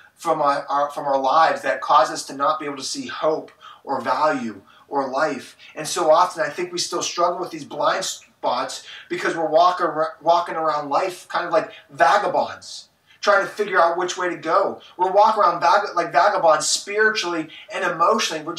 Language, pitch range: English, 140-205 Hz